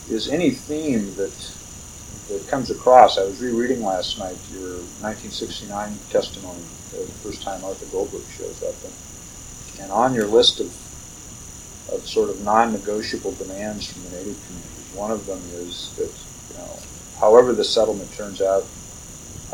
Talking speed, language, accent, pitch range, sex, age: 150 wpm, English, American, 95-120 Hz, male, 50-69